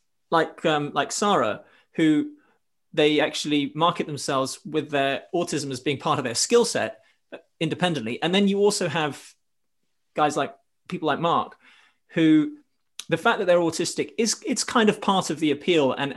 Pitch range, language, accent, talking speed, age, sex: 135-170 Hz, English, British, 165 wpm, 30-49, male